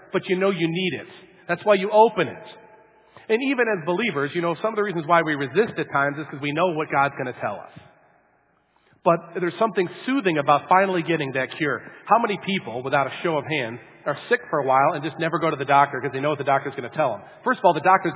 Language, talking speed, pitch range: English, 265 wpm, 150-205 Hz